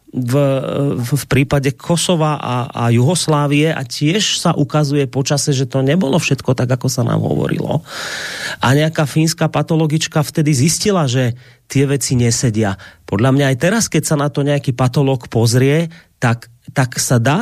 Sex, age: male, 30-49